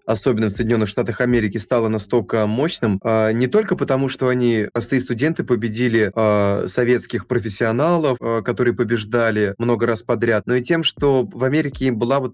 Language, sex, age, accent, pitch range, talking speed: Russian, male, 20-39, native, 115-130 Hz, 155 wpm